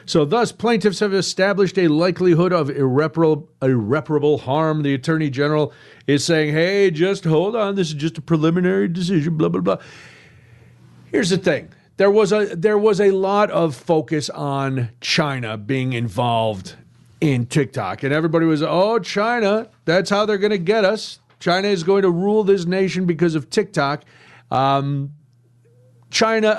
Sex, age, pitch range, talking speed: male, 40-59, 135-180 Hz, 155 wpm